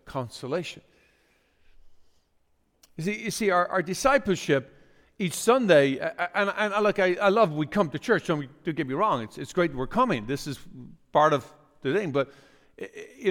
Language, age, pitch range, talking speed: English, 50-69, 135-185 Hz, 170 wpm